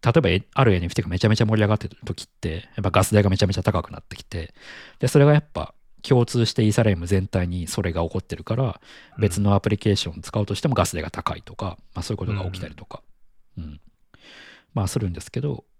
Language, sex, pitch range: Japanese, male, 90-115 Hz